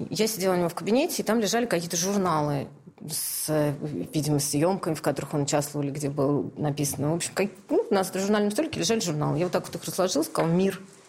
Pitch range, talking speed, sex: 155-195 Hz, 210 wpm, female